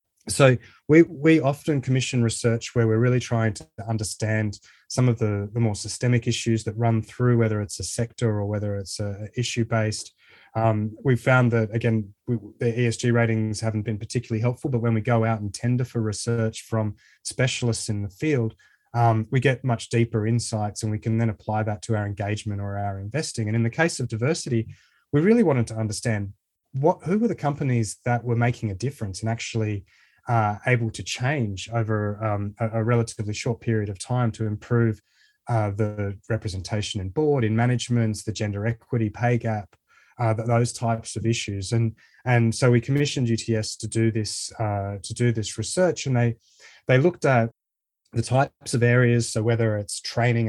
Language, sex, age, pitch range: English, male, 20-39, 110-120 Hz